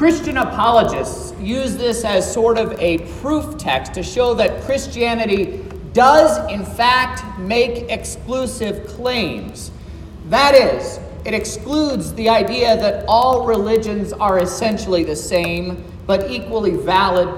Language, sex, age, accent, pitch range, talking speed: English, male, 40-59, American, 185-240 Hz, 125 wpm